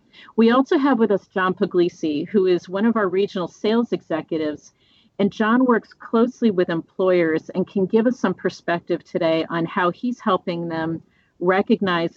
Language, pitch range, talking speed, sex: English, 170-210 Hz, 170 wpm, female